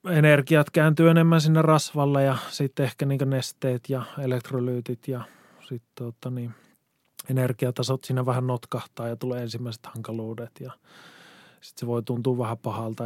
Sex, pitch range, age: male, 120-135 Hz, 20-39